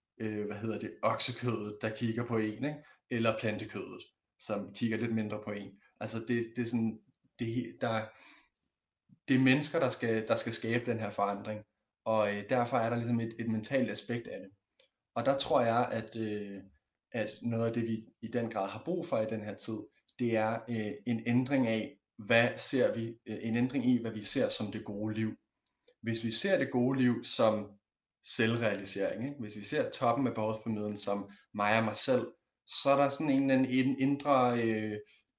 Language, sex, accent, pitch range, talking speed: Danish, male, native, 110-125 Hz, 200 wpm